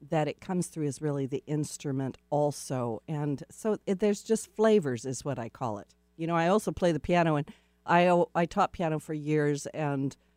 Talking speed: 205 wpm